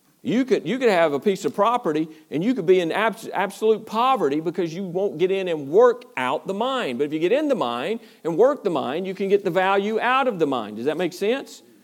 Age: 50-69